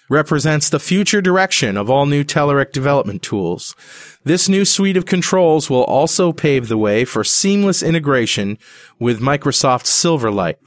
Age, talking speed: 30-49, 145 wpm